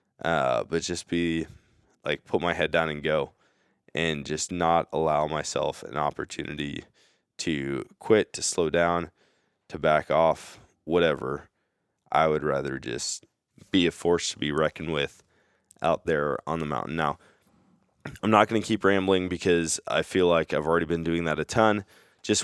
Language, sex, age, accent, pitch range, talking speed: English, male, 20-39, American, 80-100 Hz, 165 wpm